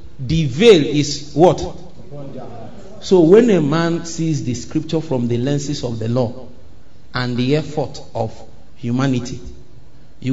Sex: male